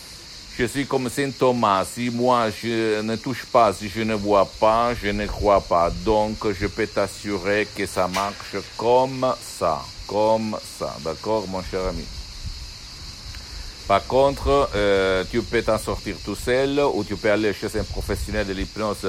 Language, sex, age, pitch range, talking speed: Italian, male, 60-79, 90-110 Hz, 165 wpm